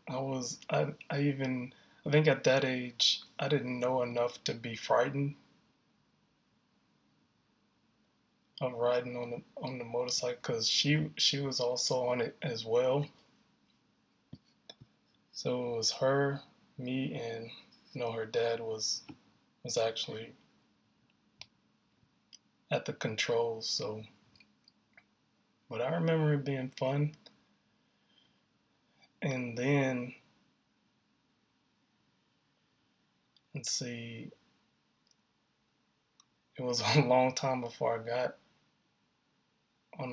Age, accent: 20-39, American